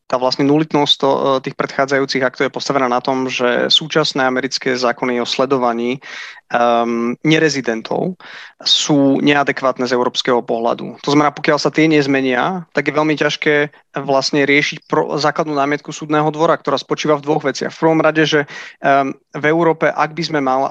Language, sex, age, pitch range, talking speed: Slovak, male, 30-49, 135-155 Hz, 165 wpm